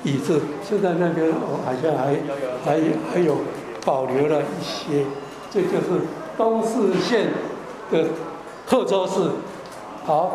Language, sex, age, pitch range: Chinese, male, 60-79, 165-225 Hz